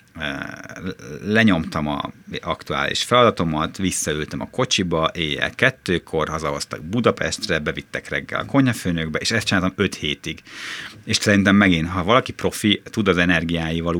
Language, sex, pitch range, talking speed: Hungarian, male, 85-105 Hz, 125 wpm